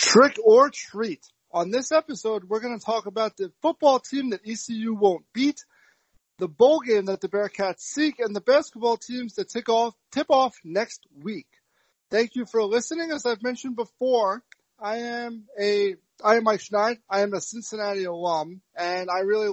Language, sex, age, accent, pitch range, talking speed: English, male, 30-49, American, 185-230 Hz, 180 wpm